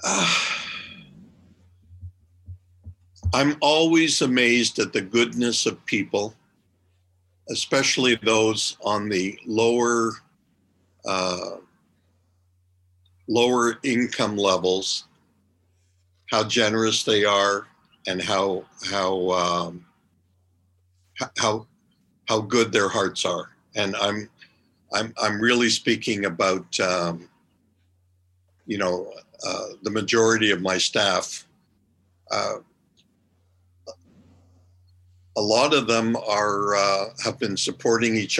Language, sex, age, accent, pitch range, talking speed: English, male, 60-79, American, 90-110 Hz, 90 wpm